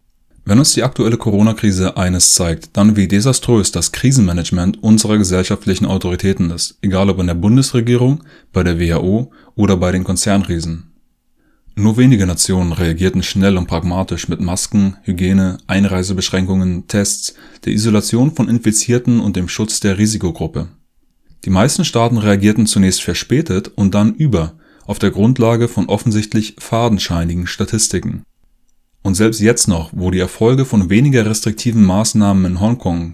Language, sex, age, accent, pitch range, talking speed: German, male, 20-39, German, 90-115 Hz, 140 wpm